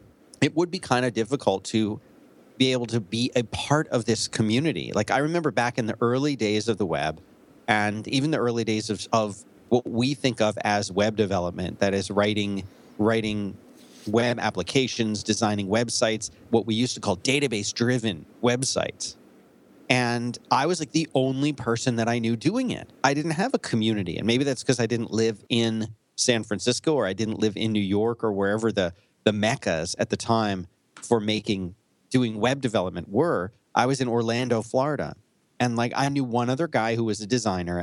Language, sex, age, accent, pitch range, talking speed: English, male, 40-59, American, 105-125 Hz, 190 wpm